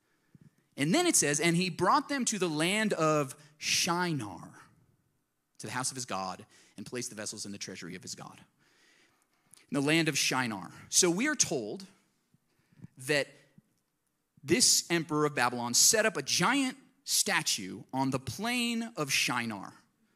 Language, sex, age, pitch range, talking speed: English, male, 30-49, 130-200 Hz, 160 wpm